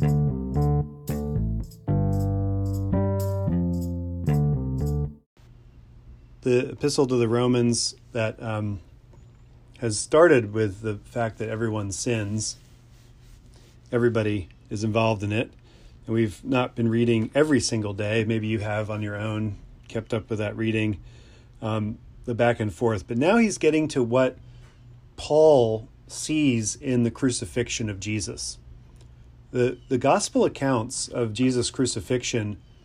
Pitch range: 110-125 Hz